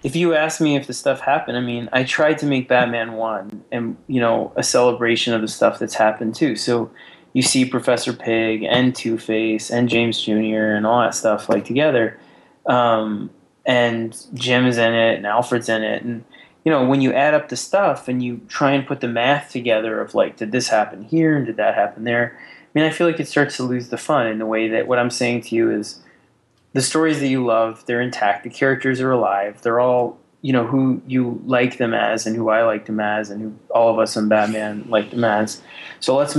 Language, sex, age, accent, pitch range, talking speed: English, male, 20-39, American, 110-130 Hz, 230 wpm